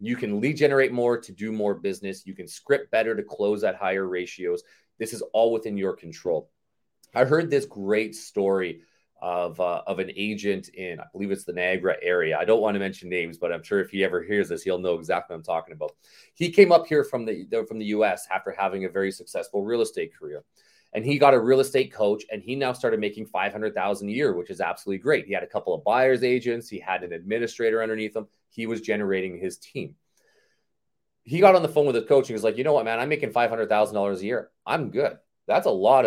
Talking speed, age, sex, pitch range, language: 235 wpm, 30-49, male, 95-130 Hz, English